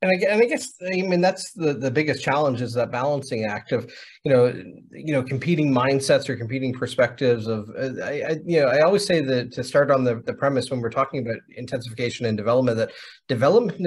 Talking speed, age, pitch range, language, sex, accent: 210 wpm, 30-49, 120-145 Hz, English, male, American